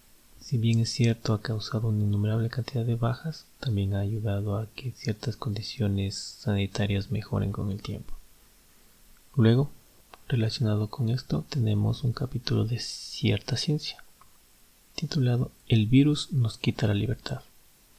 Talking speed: 135 wpm